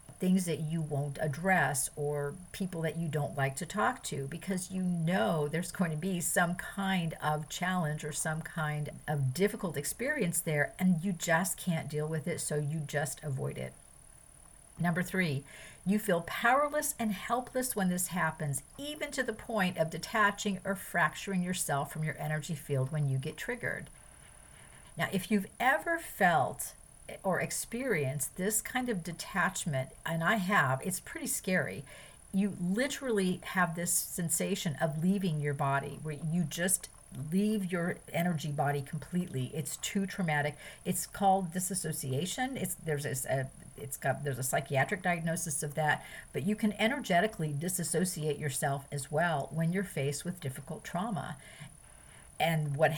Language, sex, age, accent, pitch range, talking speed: English, female, 50-69, American, 150-190 Hz, 155 wpm